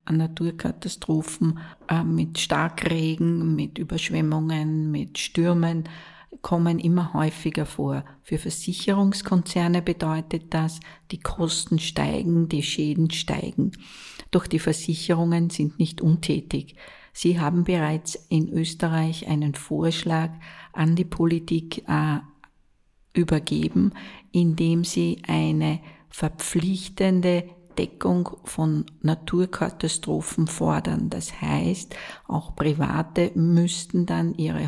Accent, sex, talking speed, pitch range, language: Austrian, female, 95 wpm, 155-175 Hz, German